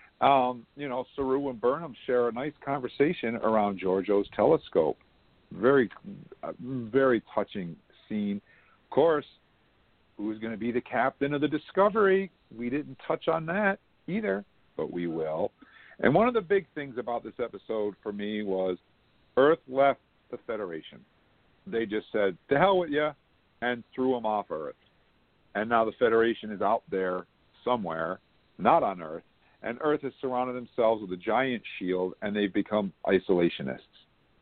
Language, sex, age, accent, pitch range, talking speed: English, male, 50-69, American, 100-140 Hz, 160 wpm